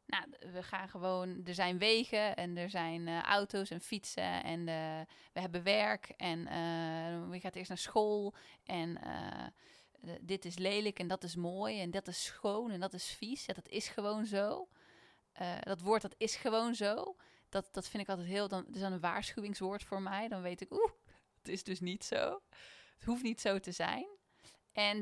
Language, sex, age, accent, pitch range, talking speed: Dutch, female, 10-29, Dutch, 180-225 Hz, 200 wpm